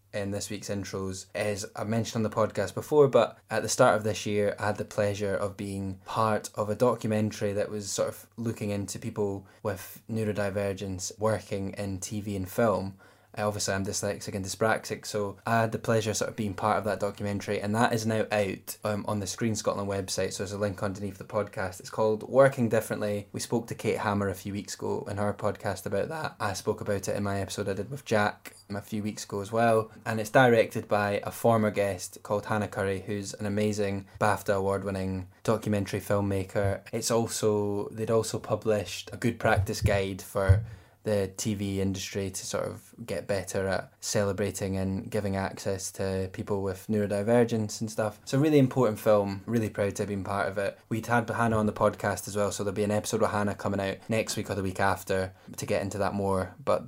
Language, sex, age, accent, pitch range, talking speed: English, male, 10-29, British, 100-110 Hz, 215 wpm